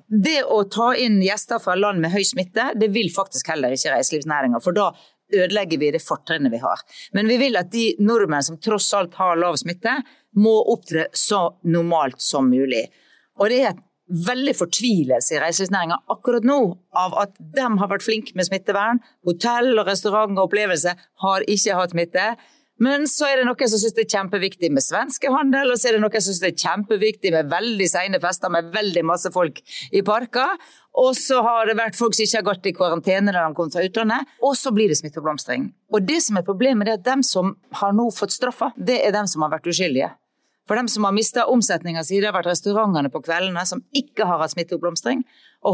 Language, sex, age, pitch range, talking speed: English, female, 40-59, 175-235 Hz, 210 wpm